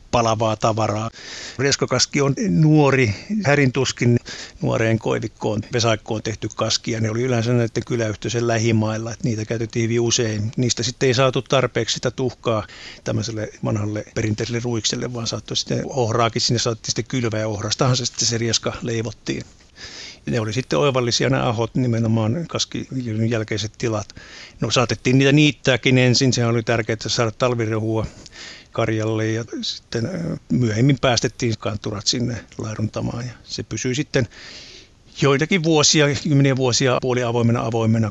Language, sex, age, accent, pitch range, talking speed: Finnish, male, 50-69, native, 110-125 Hz, 140 wpm